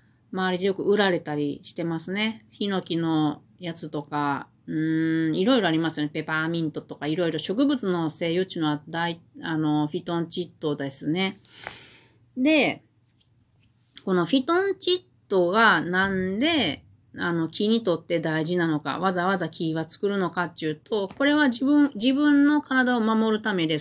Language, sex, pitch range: Japanese, female, 150-200 Hz